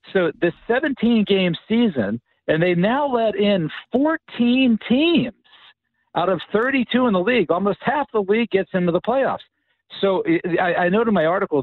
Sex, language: male, English